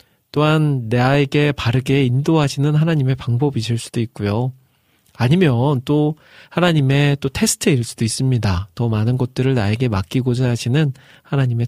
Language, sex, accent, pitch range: Korean, male, native, 120-150 Hz